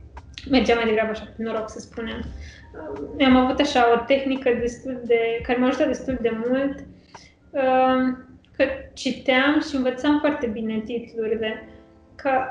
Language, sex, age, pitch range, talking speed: Romanian, female, 20-39, 235-270 Hz, 140 wpm